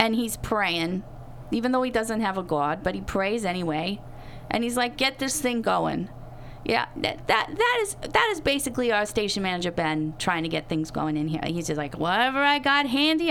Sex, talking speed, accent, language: female, 205 wpm, American, English